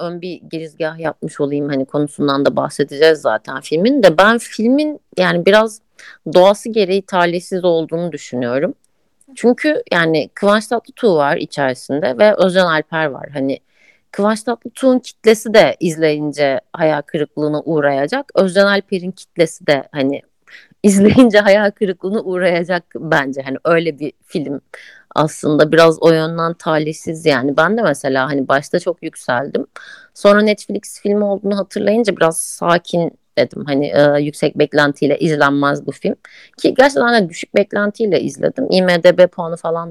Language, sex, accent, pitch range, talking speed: Turkish, female, native, 150-210 Hz, 135 wpm